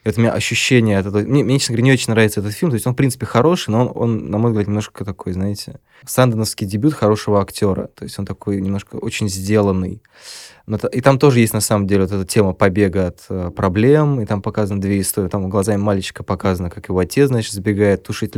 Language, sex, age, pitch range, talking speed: Russian, male, 20-39, 100-115 Hz, 225 wpm